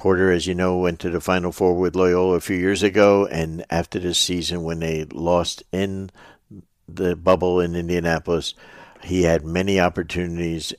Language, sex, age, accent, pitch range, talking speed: English, male, 60-79, American, 80-95 Hz, 175 wpm